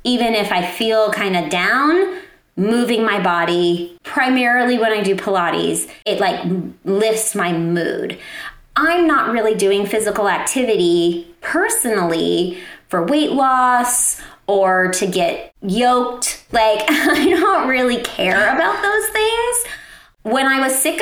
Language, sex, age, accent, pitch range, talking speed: English, female, 30-49, American, 200-260 Hz, 130 wpm